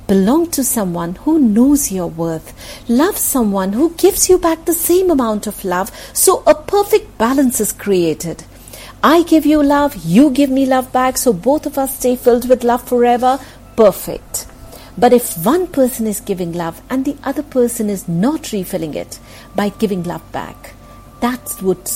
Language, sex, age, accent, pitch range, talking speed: English, female, 50-69, Indian, 185-270 Hz, 175 wpm